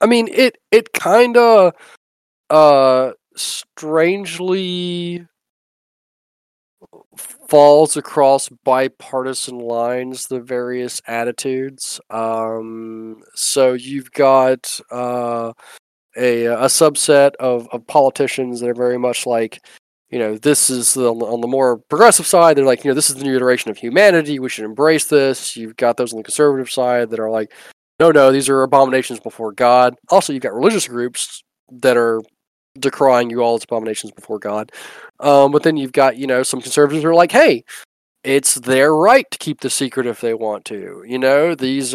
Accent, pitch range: American, 120-145 Hz